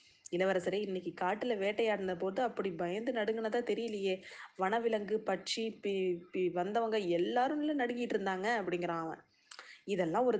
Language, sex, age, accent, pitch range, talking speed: Tamil, female, 20-39, native, 185-235 Hz, 120 wpm